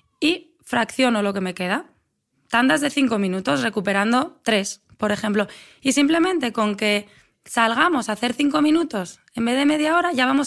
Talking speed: 170 wpm